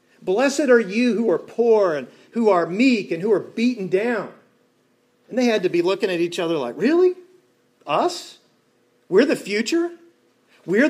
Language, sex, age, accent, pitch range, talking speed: English, male, 40-59, American, 175-230 Hz, 170 wpm